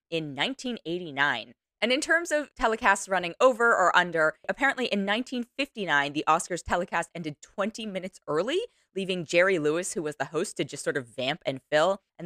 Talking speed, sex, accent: 175 wpm, female, American